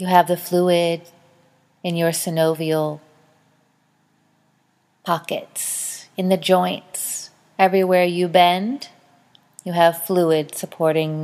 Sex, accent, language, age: female, American, English, 30-49